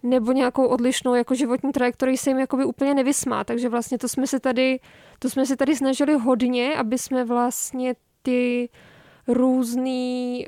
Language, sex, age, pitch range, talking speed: Czech, female, 20-39, 245-270 Hz, 165 wpm